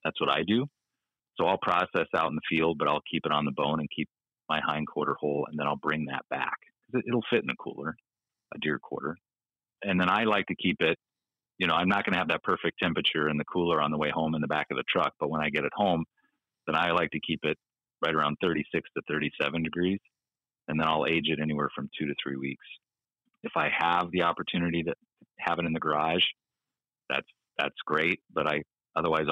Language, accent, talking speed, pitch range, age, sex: English, American, 235 wpm, 80-105 Hz, 30-49, male